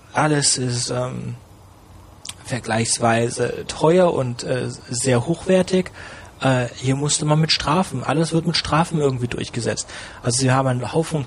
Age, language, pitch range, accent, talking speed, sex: 30-49, German, 125-165 Hz, German, 140 wpm, male